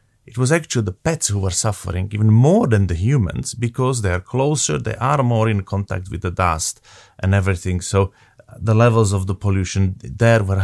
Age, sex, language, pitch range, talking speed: 30-49, male, English, 105-125 Hz, 195 wpm